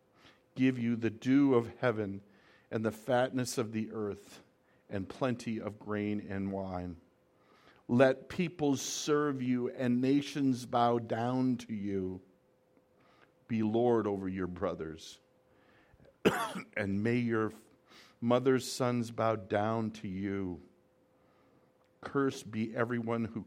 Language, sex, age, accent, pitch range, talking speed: English, male, 50-69, American, 95-120 Hz, 120 wpm